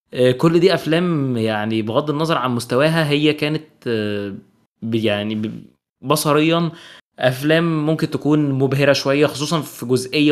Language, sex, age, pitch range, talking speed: Arabic, male, 20-39, 120-155 Hz, 115 wpm